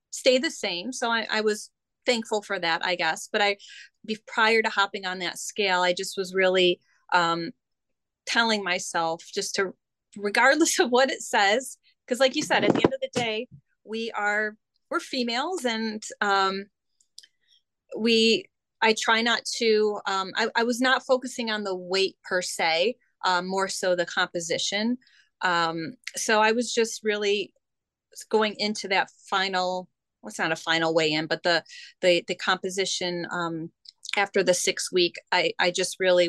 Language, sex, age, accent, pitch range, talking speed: English, female, 30-49, American, 185-225 Hz, 165 wpm